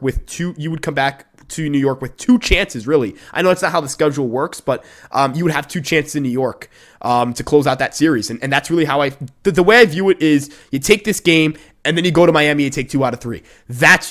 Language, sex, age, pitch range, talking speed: English, male, 20-39, 125-155 Hz, 285 wpm